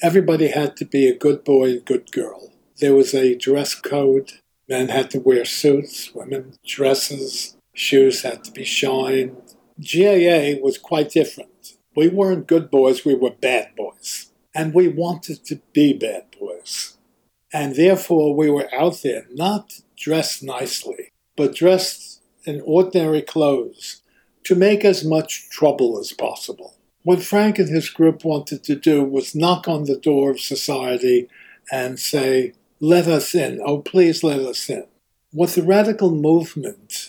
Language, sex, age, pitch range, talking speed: English, male, 60-79, 135-180 Hz, 155 wpm